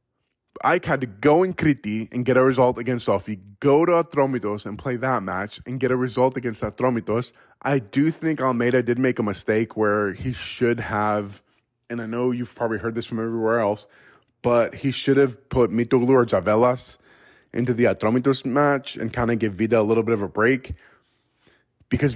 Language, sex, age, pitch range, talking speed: English, male, 20-39, 110-130 Hz, 190 wpm